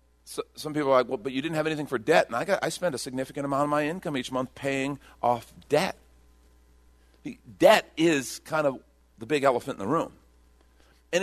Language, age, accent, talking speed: English, 50-69, American, 210 wpm